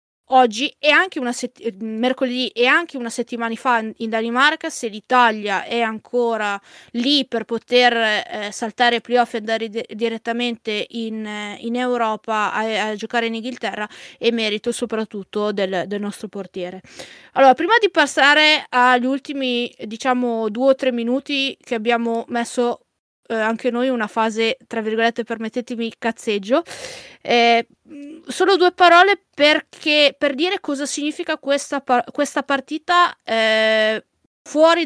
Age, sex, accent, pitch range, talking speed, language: 20-39, female, native, 230-275 Hz, 135 wpm, Italian